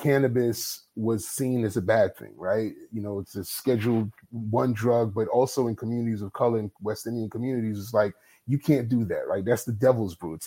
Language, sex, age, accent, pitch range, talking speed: English, male, 30-49, American, 105-130 Hz, 225 wpm